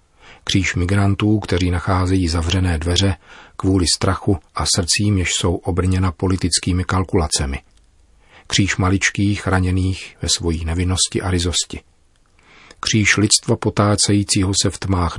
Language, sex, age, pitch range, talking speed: Czech, male, 40-59, 85-100 Hz, 115 wpm